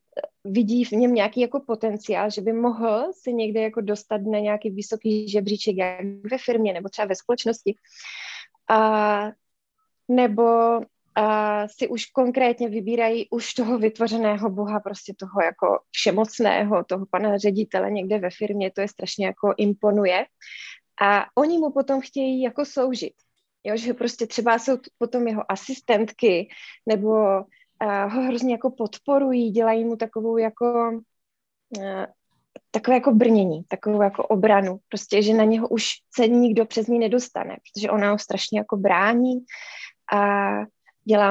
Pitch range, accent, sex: 205-235 Hz, native, female